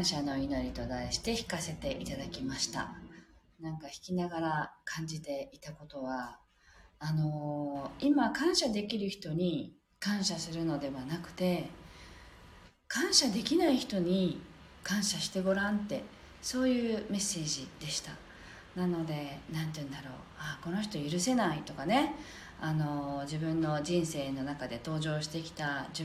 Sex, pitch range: female, 155-200 Hz